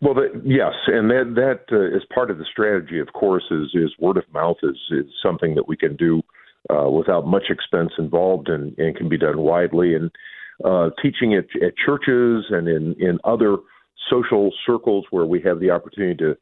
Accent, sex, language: American, male, English